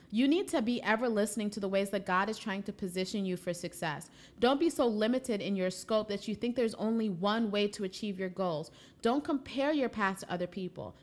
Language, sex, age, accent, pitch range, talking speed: English, female, 30-49, American, 185-235 Hz, 235 wpm